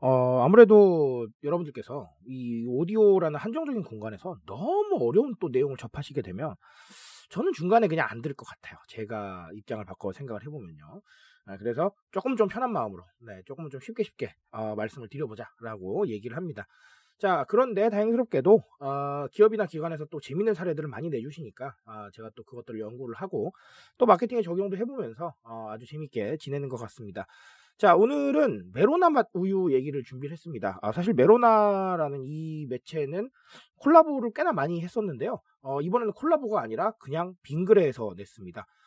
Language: Korean